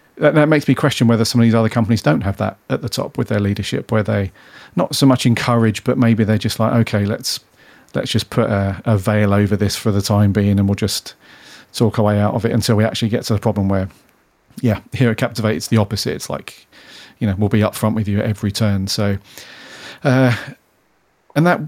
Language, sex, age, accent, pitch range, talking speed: English, male, 40-59, British, 105-120 Hz, 235 wpm